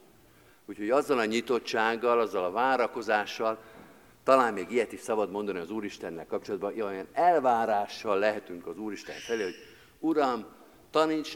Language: Hungarian